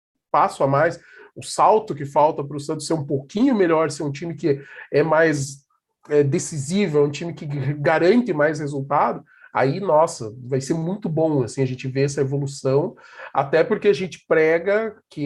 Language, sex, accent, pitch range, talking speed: Portuguese, male, Brazilian, 145-185 Hz, 185 wpm